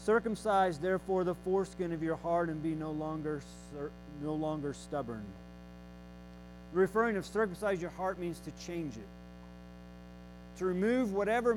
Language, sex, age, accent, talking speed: English, male, 40-59, American, 140 wpm